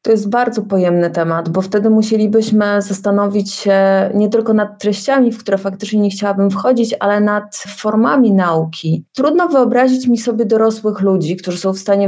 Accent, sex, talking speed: native, female, 170 wpm